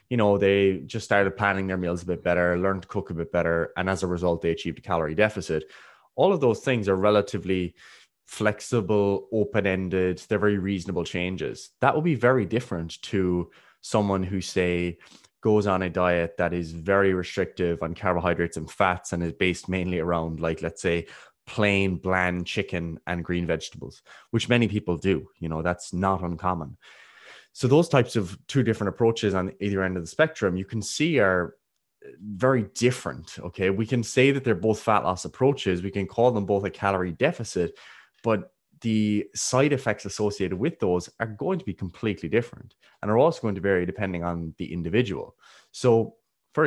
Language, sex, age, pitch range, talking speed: English, male, 20-39, 90-105 Hz, 185 wpm